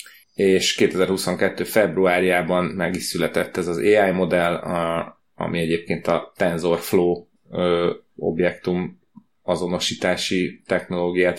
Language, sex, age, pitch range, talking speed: Hungarian, male, 30-49, 90-100 Hz, 90 wpm